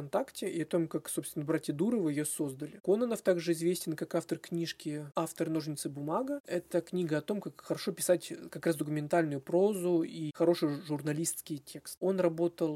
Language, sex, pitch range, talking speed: Russian, male, 155-180 Hz, 165 wpm